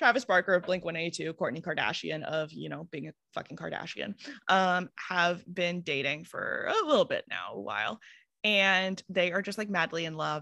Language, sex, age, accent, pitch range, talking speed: English, female, 20-39, American, 165-210 Hz, 185 wpm